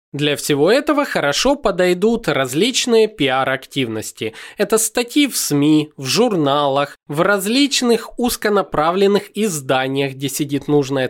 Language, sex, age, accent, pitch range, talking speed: Russian, male, 20-39, native, 135-205 Hz, 110 wpm